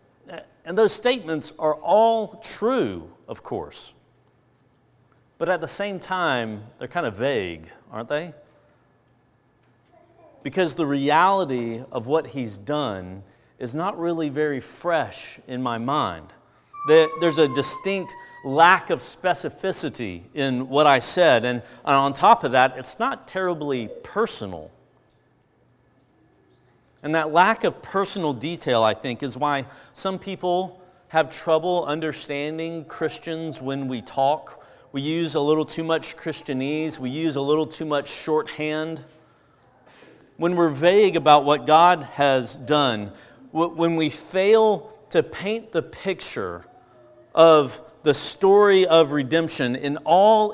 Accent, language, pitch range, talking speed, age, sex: American, English, 140-180 Hz, 130 wpm, 40-59, male